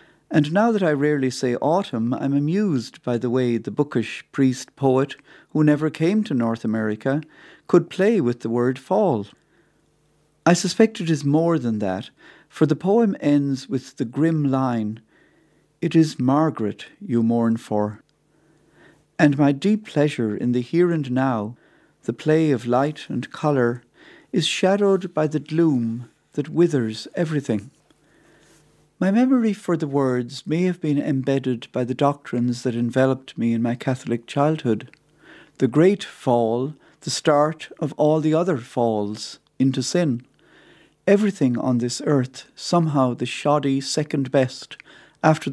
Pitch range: 125-160 Hz